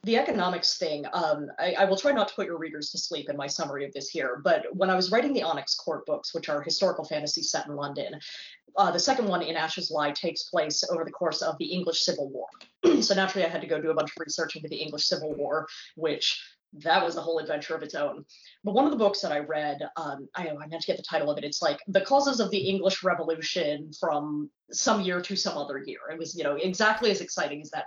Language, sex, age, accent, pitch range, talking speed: English, female, 30-49, American, 150-205 Hz, 260 wpm